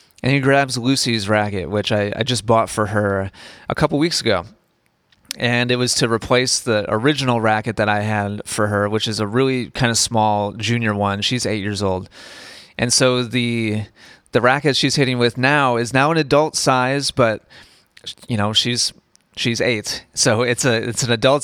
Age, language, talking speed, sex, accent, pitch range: 30-49, English, 190 wpm, male, American, 105-130 Hz